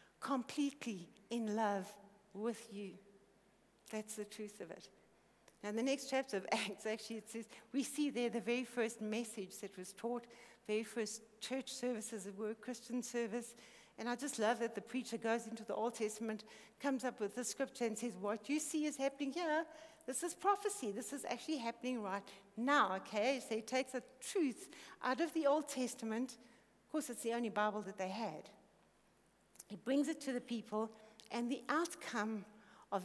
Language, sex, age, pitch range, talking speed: English, female, 60-79, 215-270 Hz, 185 wpm